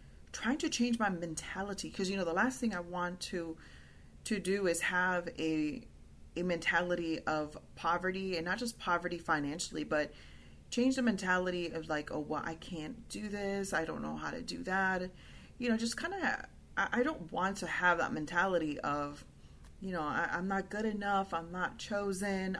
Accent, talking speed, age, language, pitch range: American, 190 wpm, 30-49, English, 145-195 Hz